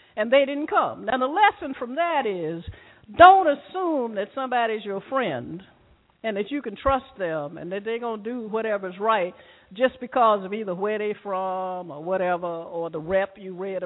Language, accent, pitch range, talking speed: English, American, 180-275 Hz, 190 wpm